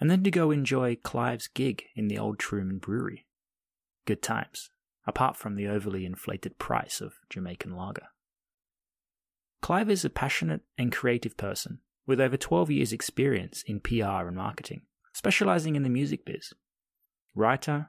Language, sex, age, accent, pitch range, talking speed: English, male, 30-49, Australian, 100-145 Hz, 150 wpm